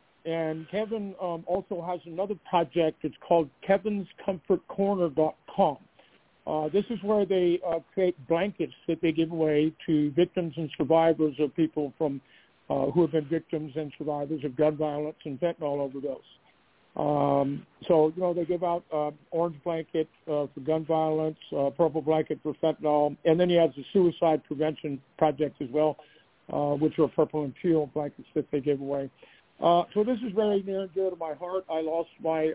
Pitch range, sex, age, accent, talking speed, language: 145-165 Hz, male, 50-69, American, 175 wpm, English